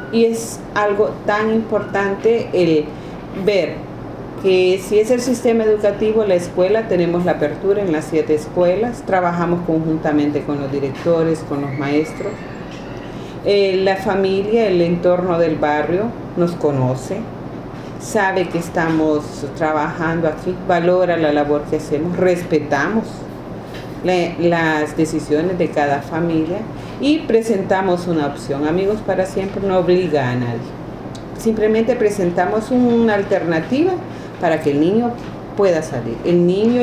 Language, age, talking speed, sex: Spanish, 40-59, 125 wpm, female